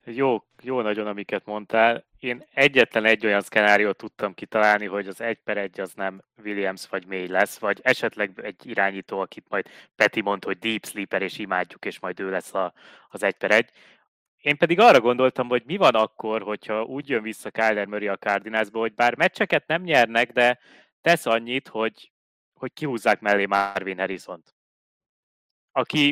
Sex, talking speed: male, 175 wpm